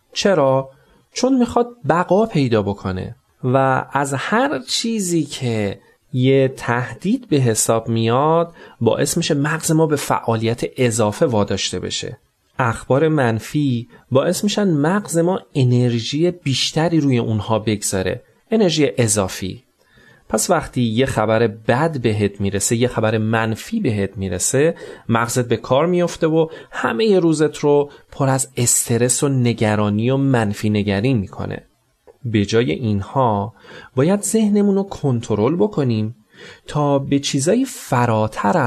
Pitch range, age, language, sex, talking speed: 110-160 Hz, 30-49, Persian, male, 125 wpm